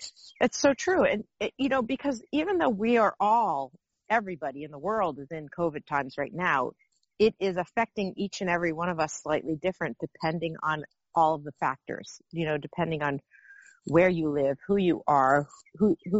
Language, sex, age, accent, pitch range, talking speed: English, female, 40-59, American, 155-190 Hz, 190 wpm